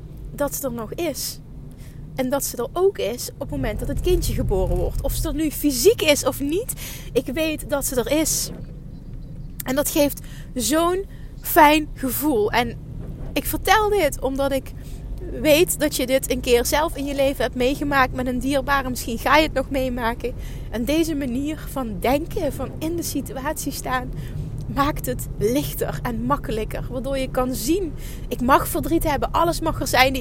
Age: 20-39